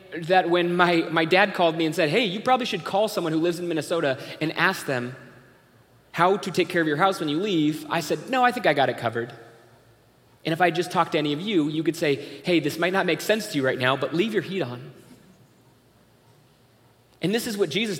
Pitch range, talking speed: 145-190 Hz, 245 wpm